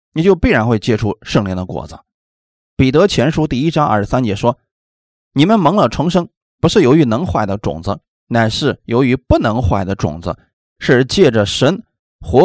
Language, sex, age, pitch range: Chinese, male, 20-39, 90-145 Hz